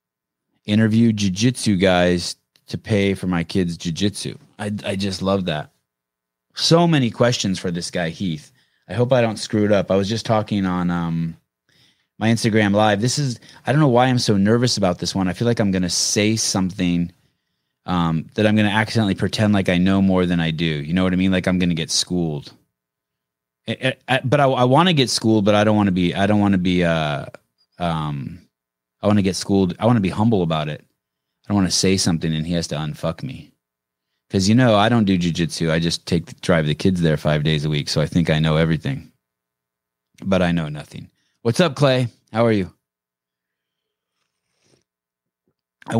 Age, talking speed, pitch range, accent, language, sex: 20-39, 205 wpm, 80-110 Hz, American, English, male